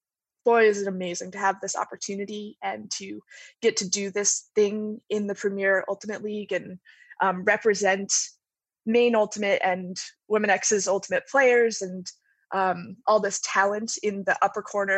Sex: female